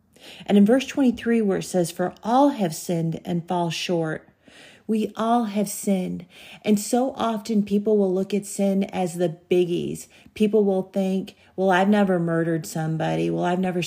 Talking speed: 175 wpm